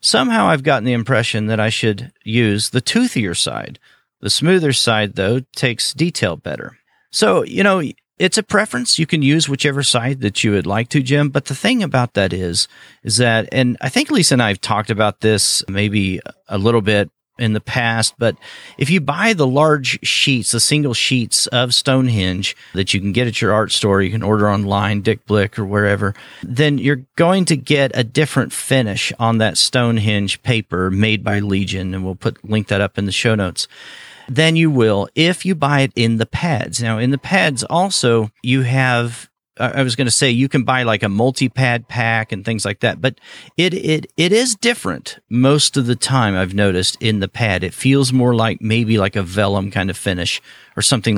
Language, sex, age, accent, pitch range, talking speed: English, male, 40-59, American, 105-135 Hz, 205 wpm